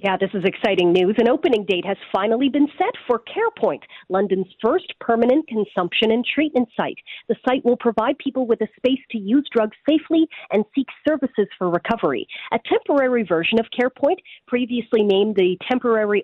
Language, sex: English, female